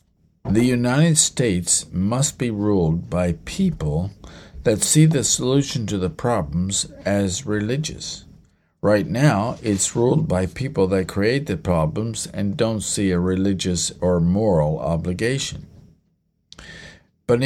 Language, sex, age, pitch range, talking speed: English, male, 50-69, 95-135 Hz, 125 wpm